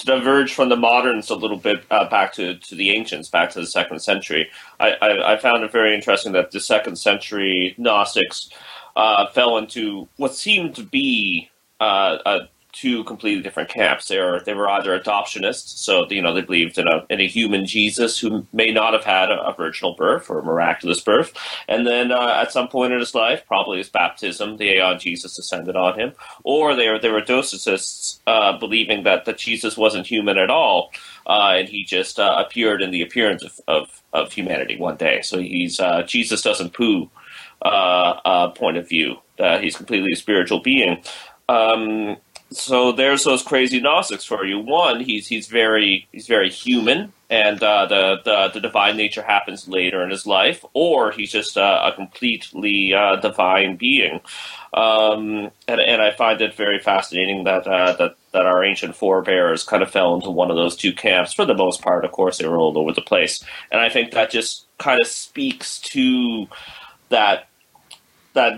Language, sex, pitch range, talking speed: English, male, 95-120 Hz, 195 wpm